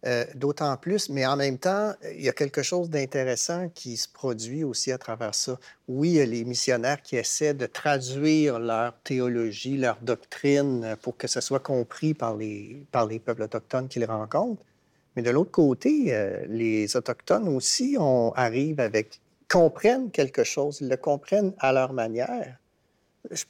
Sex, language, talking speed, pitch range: male, French, 175 wpm, 120-155 Hz